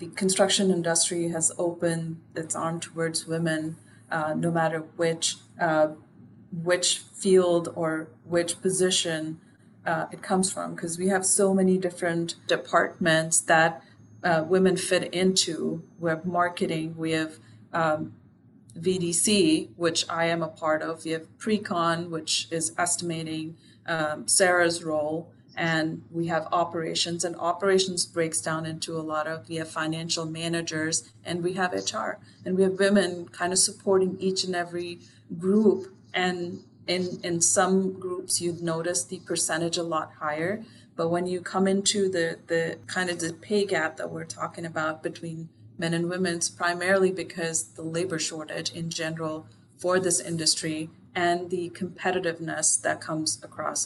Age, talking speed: 30-49, 155 wpm